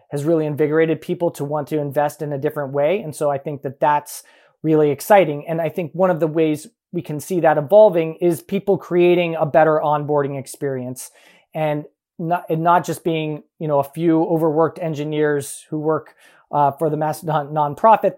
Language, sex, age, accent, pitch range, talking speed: English, male, 30-49, American, 145-175 Hz, 195 wpm